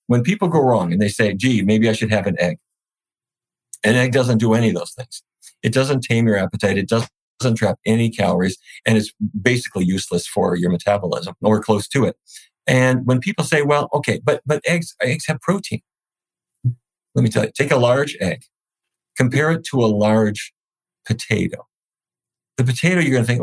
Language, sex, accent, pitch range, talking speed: English, male, American, 105-125 Hz, 190 wpm